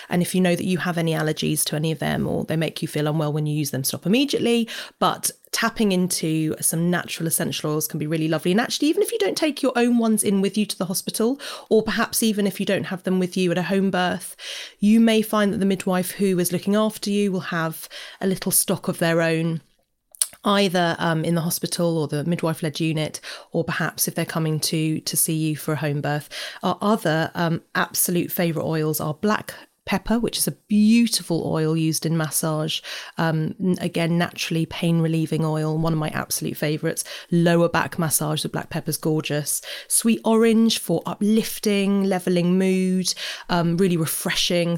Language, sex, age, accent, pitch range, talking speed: English, female, 30-49, British, 160-195 Hz, 205 wpm